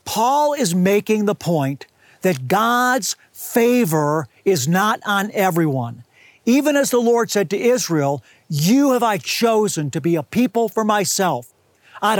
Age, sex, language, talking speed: 50-69, male, English, 150 wpm